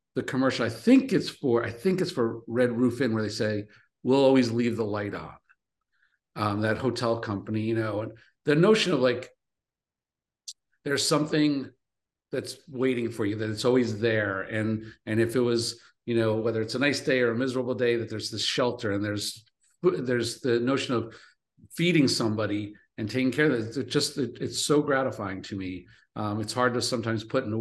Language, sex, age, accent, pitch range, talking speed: English, male, 50-69, American, 110-130 Hz, 200 wpm